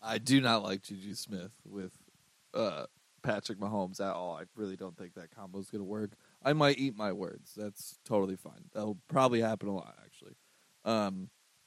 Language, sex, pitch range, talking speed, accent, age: English, male, 100-115 Hz, 195 wpm, American, 20-39